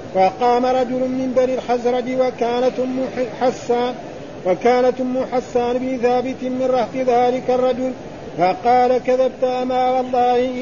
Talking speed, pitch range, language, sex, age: 105 wpm, 245-255 Hz, Arabic, male, 50-69